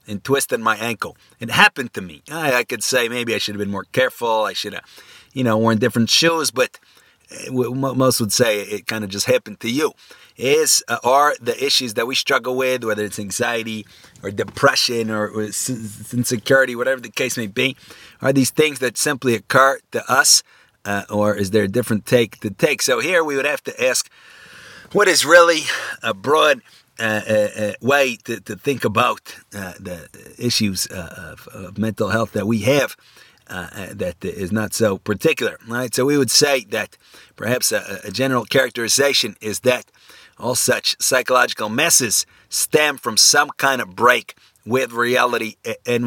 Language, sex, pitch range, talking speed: English, male, 105-135 Hz, 185 wpm